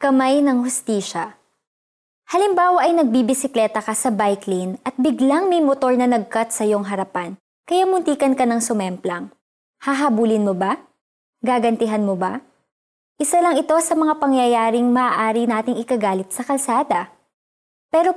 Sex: male